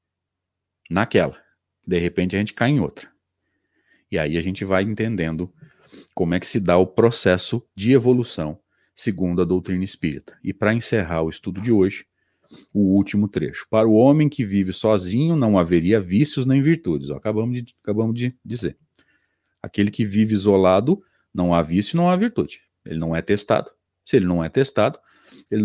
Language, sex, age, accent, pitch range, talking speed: Portuguese, male, 40-59, Brazilian, 90-115 Hz, 170 wpm